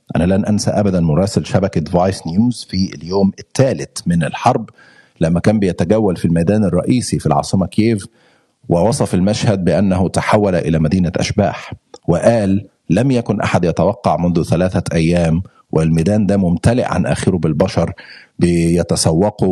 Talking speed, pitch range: 135 wpm, 90-120 Hz